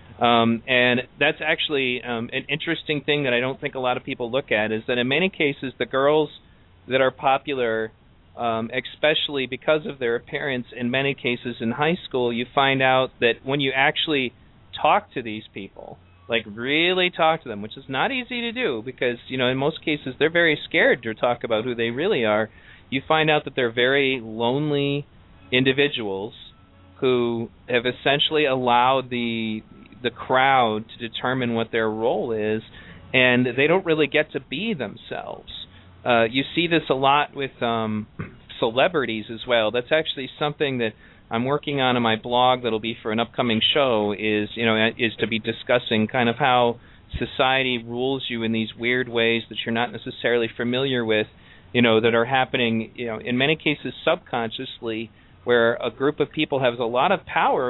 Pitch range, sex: 115-135 Hz, male